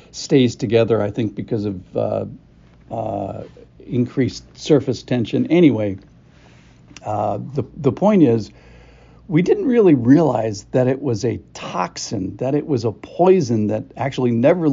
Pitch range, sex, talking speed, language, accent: 100-130 Hz, male, 140 wpm, English, American